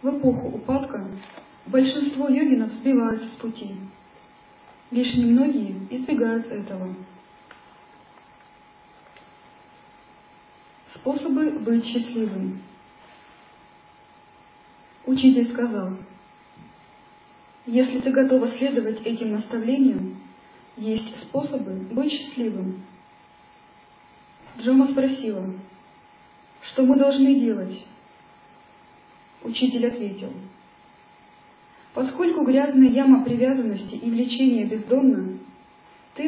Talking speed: 70 wpm